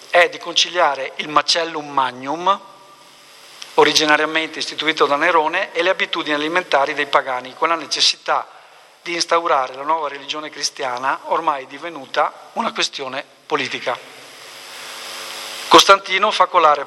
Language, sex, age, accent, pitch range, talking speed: Italian, male, 50-69, native, 140-175 Hz, 115 wpm